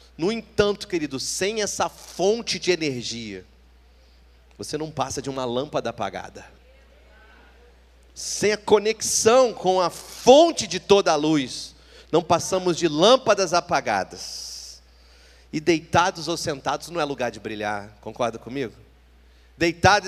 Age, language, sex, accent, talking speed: 40-59, Portuguese, male, Brazilian, 125 wpm